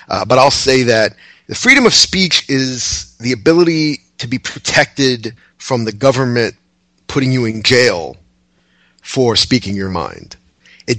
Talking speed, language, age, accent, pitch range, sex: 145 wpm, English, 40-59, American, 105-140 Hz, male